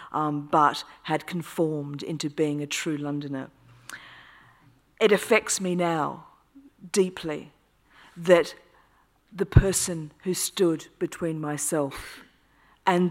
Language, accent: English, British